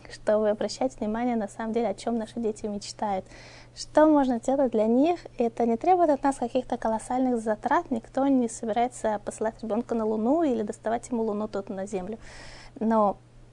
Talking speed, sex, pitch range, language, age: 175 wpm, female, 205-250 Hz, Russian, 20-39